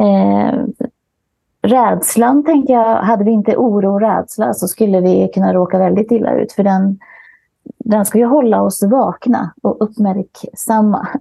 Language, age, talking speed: Swedish, 30-49, 145 wpm